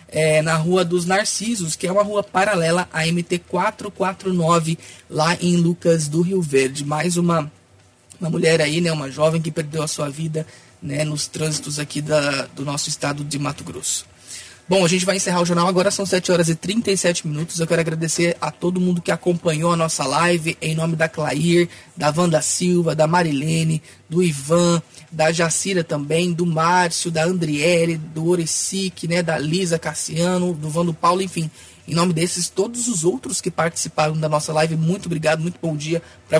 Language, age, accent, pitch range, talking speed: Portuguese, 20-39, Brazilian, 155-180 Hz, 185 wpm